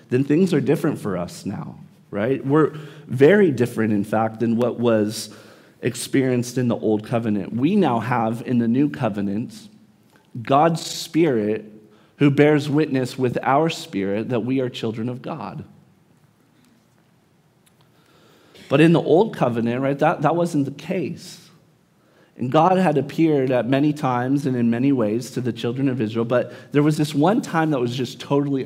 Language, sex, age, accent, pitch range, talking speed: English, male, 40-59, American, 125-160 Hz, 165 wpm